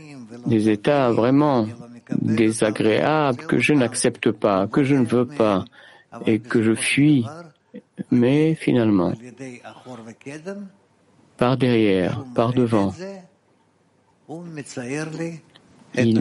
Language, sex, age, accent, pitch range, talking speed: English, male, 60-79, French, 110-140 Hz, 90 wpm